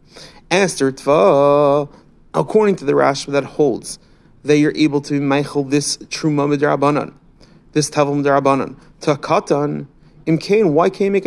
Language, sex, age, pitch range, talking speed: English, male, 30-49, 145-195 Hz, 85 wpm